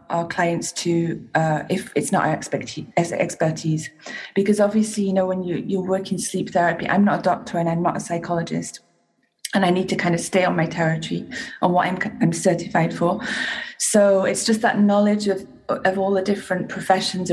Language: English